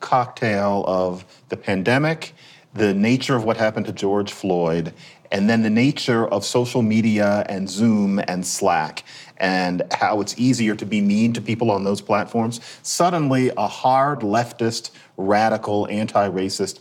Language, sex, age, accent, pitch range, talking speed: English, male, 40-59, American, 105-135 Hz, 145 wpm